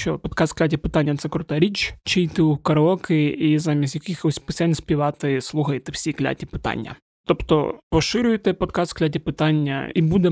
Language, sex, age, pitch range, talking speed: Ukrainian, male, 20-39, 150-175 Hz, 165 wpm